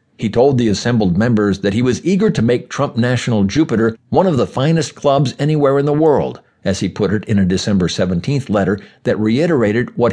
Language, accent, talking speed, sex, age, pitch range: English, American, 205 wpm, male, 60-79, 110-140 Hz